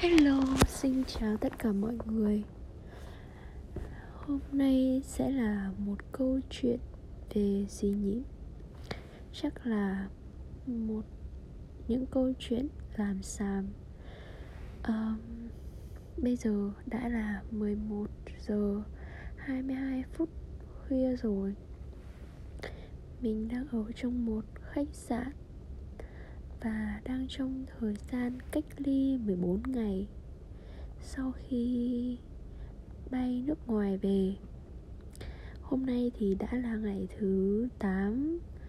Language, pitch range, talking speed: Vietnamese, 200-260 Hz, 100 wpm